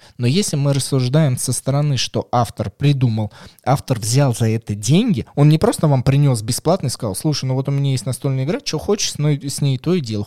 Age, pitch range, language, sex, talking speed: 20-39, 110-145 Hz, Russian, male, 220 wpm